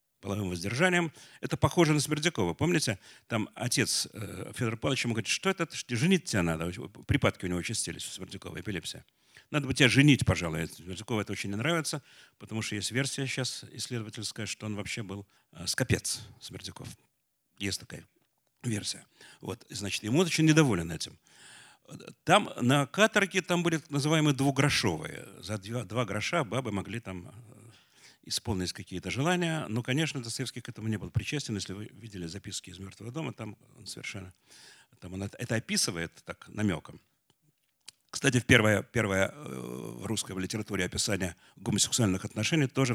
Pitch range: 100-135 Hz